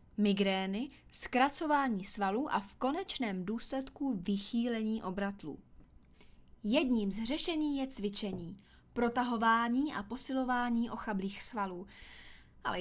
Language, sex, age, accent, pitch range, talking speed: Czech, female, 20-39, native, 185-230 Hz, 95 wpm